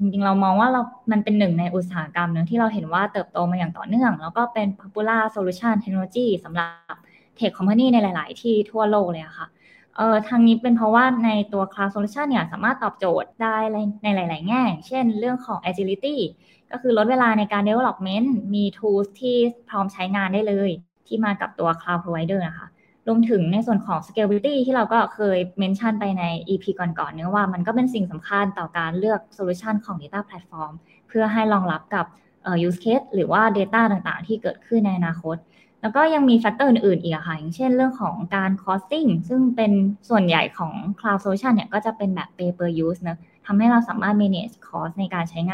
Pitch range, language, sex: 180-225 Hz, Thai, female